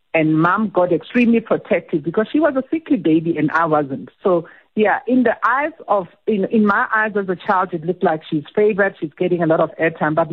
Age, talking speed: 50-69, 225 wpm